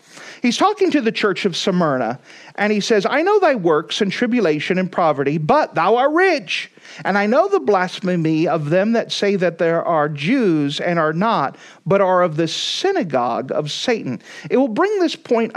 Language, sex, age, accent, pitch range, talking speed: English, male, 40-59, American, 175-245 Hz, 195 wpm